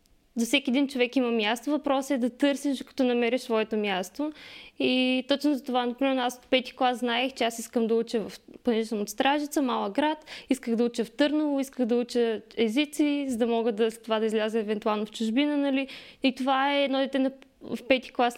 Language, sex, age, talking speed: Bulgarian, female, 20-39, 205 wpm